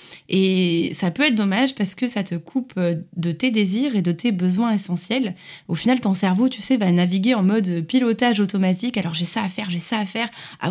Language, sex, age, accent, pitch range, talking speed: French, female, 20-39, French, 180-235 Hz, 225 wpm